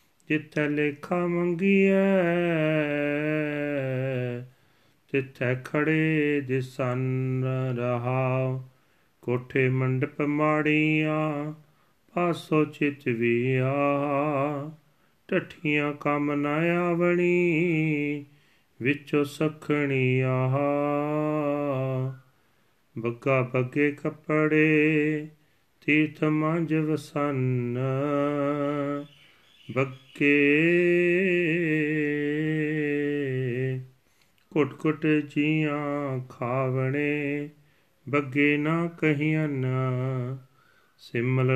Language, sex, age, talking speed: Punjabi, male, 40-59, 55 wpm